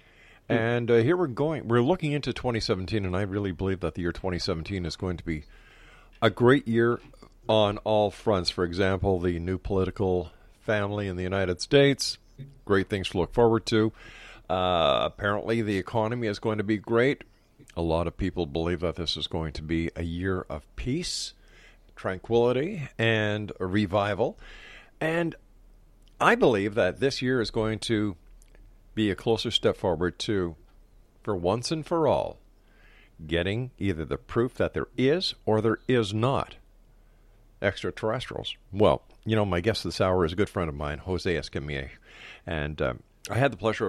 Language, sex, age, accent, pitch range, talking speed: English, male, 50-69, American, 90-115 Hz, 170 wpm